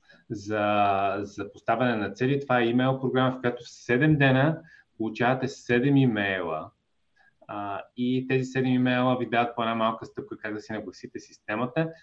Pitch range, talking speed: 105-130 Hz, 160 wpm